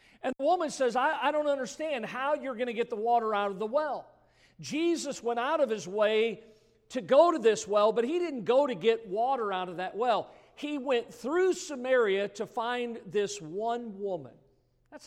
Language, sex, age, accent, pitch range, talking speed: English, male, 50-69, American, 195-265 Hz, 205 wpm